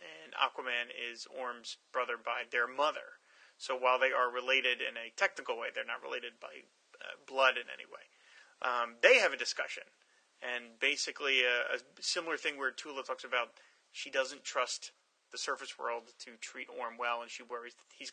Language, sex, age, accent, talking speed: English, male, 30-49, American, 185 wpm